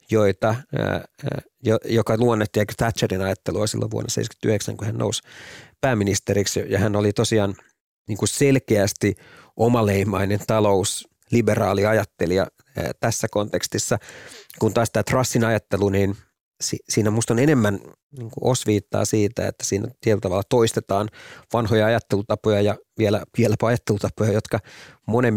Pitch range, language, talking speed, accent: 100-115 Hz, Finnish, 115 wpm, native